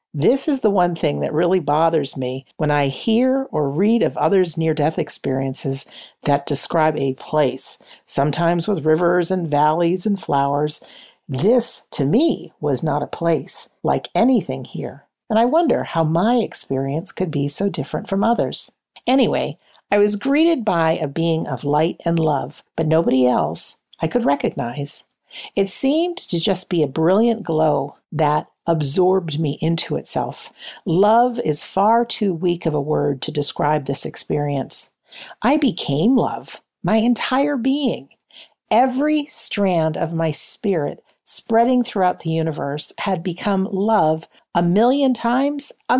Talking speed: 150 wpm